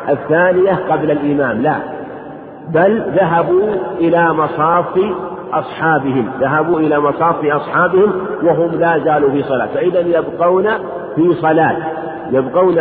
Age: 50-69